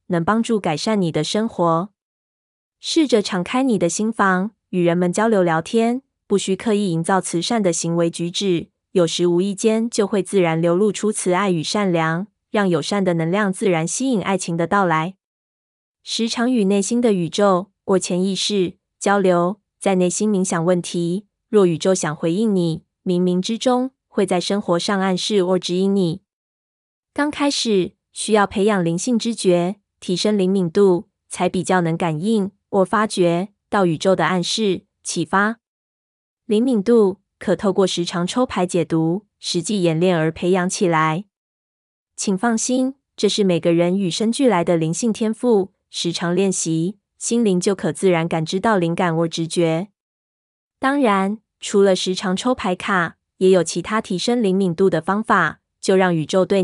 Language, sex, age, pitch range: Chinese, female, 20-39, 175-210 Hz